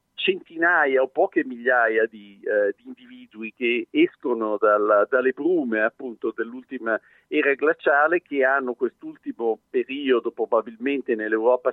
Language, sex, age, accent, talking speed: Italian, male, 50-69, native, 105 wpm